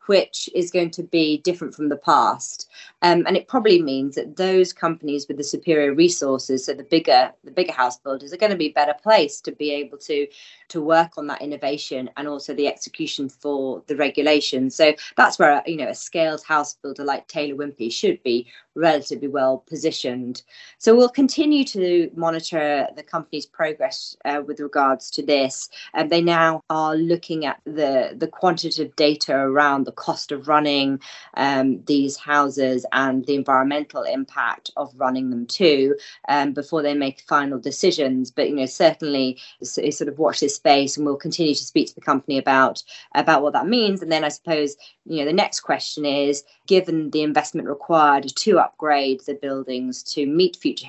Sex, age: female, 30-49